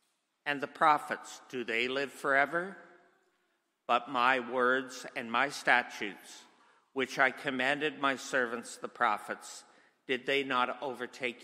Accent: American